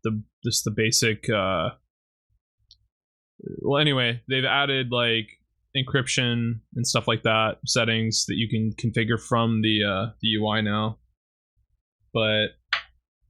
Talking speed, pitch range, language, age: 120 wpm, 110-130 Hz, English, 20-39